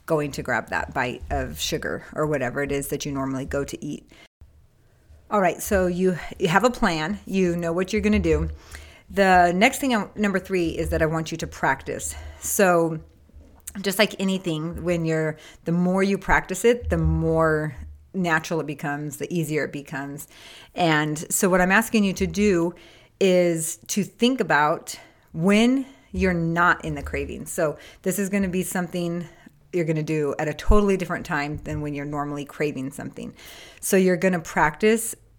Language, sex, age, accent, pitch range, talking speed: English, female, 30-49, American, 150-185 Hz, 185 wpm